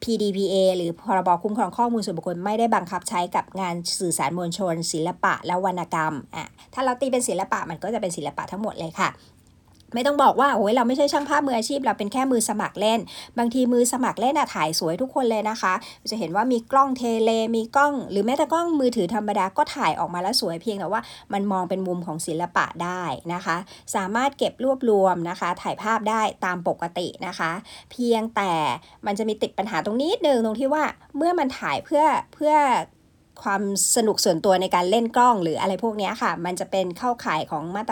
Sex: male